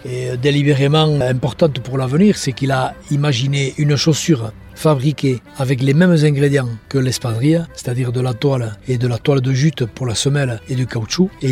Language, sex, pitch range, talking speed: French, male, 130-150 Hz, 180 wpm